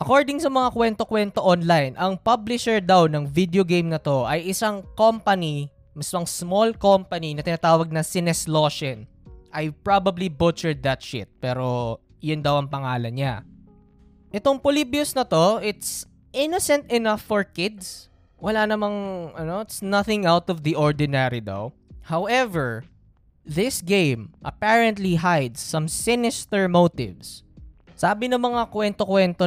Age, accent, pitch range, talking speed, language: 20-39, native, 145-205 Hz, 130 wpm, Filipino